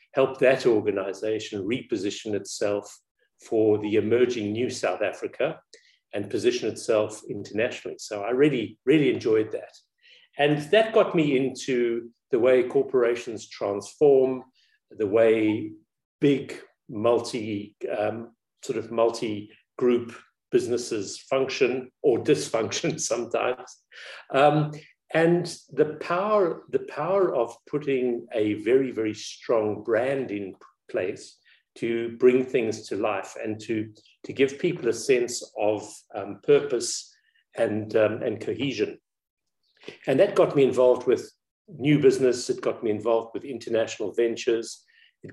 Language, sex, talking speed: English, male, 120 wpm